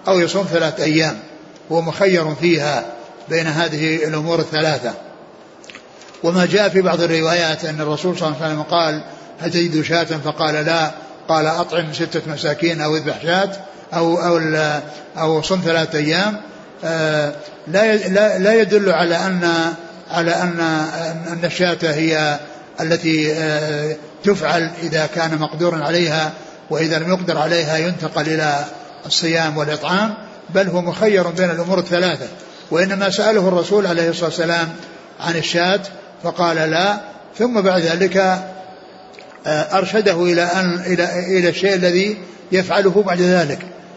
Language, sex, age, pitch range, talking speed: Arabic, male, 60-79, 160-185 Hz, 125 wpm